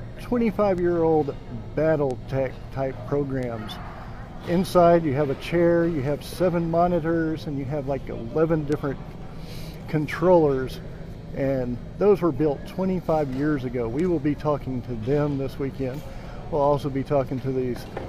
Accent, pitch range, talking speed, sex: American, 135-165 Hz, 145 wpm, male